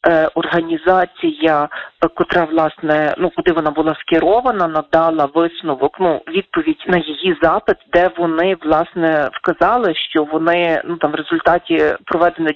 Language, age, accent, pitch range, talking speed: Ukrainian, 40-59, native, 155-180 Hz, 125 wpm